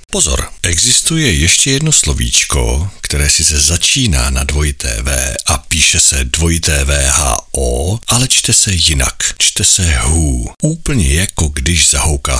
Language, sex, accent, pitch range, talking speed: Czech, male, native, 70-110 Hz, 135 wpm